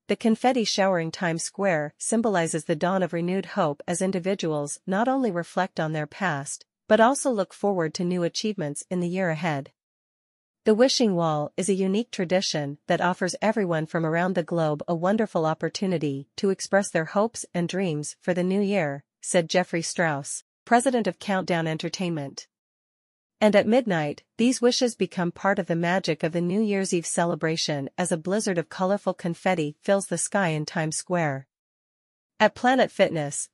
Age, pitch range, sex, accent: 40-59, 165-200 Hz, female, American